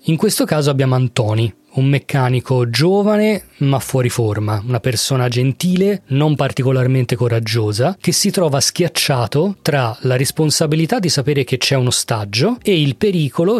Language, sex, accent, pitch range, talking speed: Italian, male, native, 125-160 Hz, 145 wpm